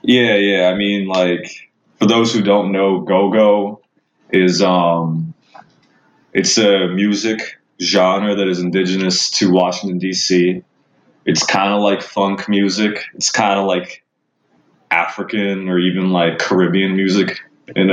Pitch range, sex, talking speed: 90-105 Hz, male, 135 wpm